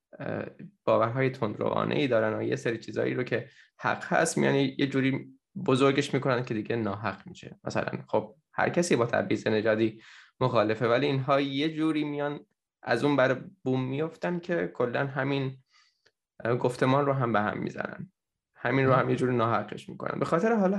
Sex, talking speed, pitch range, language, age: male, 165 wpm, 110-145 Hz, Persian, 10-29